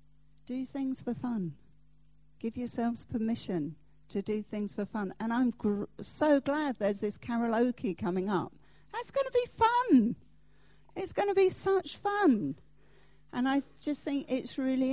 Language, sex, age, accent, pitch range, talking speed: English, female, 50-69, British, 155-225 Hz, 155 wpm